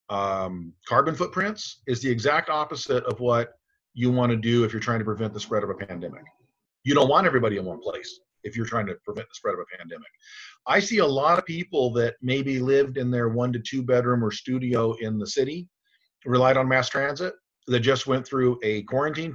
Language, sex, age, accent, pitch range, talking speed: English, male, 50-69, American, 120-155 Hz, 215 wpm